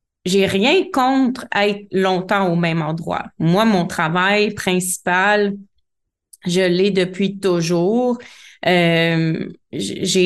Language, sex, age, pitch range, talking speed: French, female, 30-49, 180-220 Hz, 105 wpm